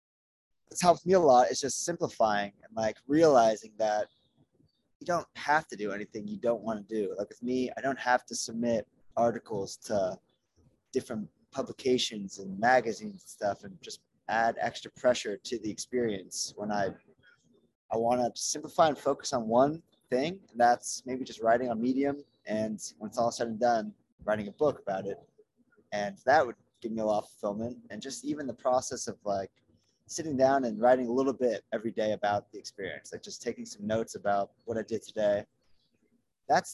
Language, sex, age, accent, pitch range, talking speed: English, male, 20-39, American, 105-135 Hz, 190 wpm